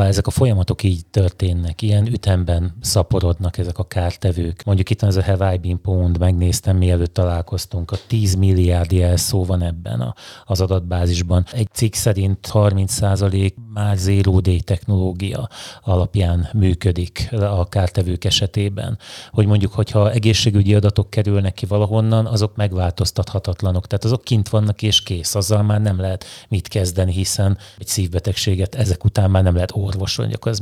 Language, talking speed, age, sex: Hungarian, 145 wpm, 30-49, male